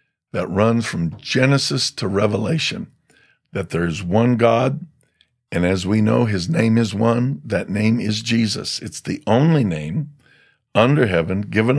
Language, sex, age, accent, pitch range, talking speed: English, male, 50-69, American, 95-120 Hz, 155 wpm